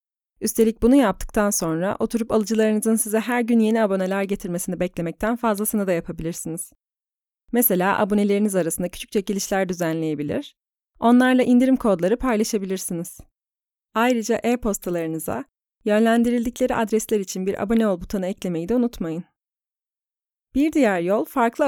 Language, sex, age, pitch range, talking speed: Turkish, female, 30-49, 185-235 Hz, 115 wpm